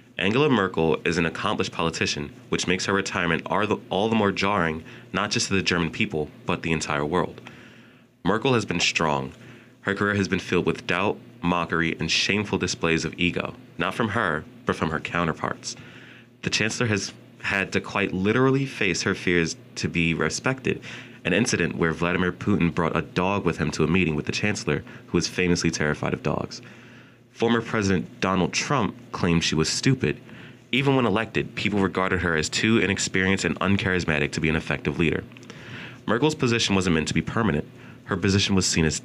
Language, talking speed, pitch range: English, 185 wpm, 85-115 Hz